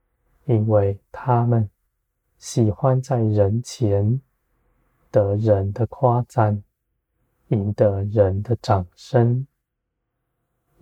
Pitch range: 105-125 Hz